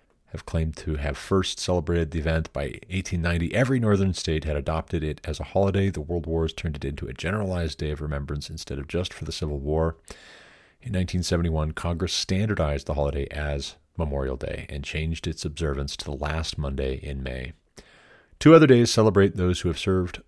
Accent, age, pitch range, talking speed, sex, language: American, 30-49, 75-95 Hz, 190 wpm, male, English